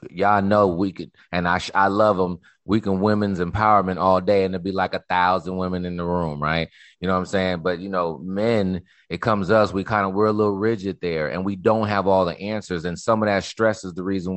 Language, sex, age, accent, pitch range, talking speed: English, male, 30-49, American, 90-115 Hz, 255 wpm